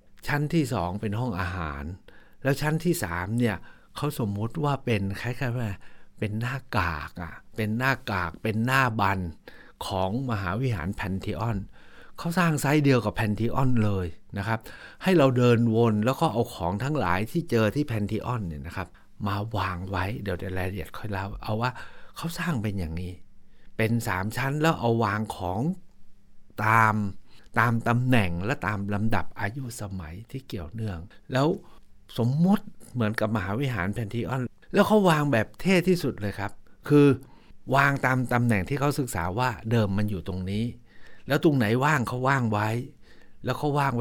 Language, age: Thai, 60-79